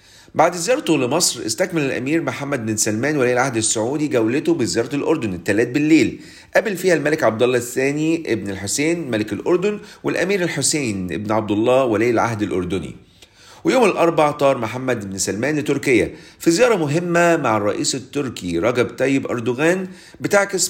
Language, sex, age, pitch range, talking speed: Arabic, male, 40-59, 115-165 Hz, 140 wpm